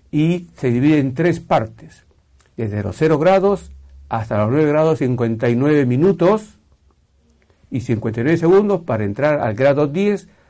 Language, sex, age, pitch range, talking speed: Spanish, male, 50-69, 110-155 Hz, 135 wpm